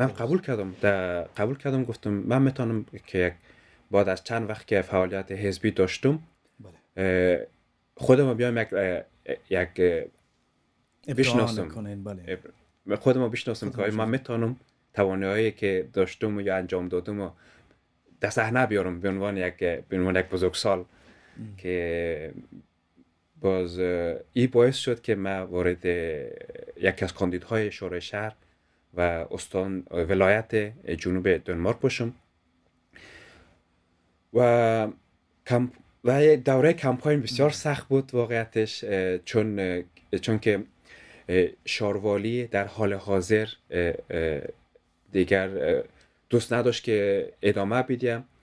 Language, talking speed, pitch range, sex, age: Persian, 110 wpm, 95-120 Hz, male, 30-49